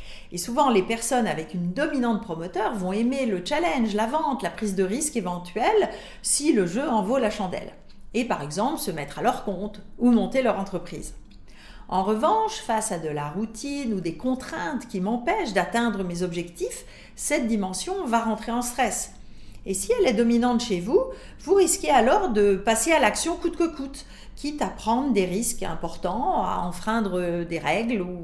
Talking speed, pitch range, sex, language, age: 185 wpm, 190-260 Hz, female, French, 40-59